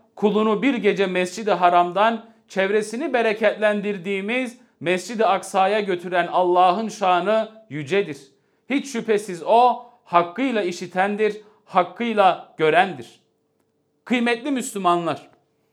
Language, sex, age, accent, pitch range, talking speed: Turkish, male, 40-59, native, 185-230 Hz, 85 wpm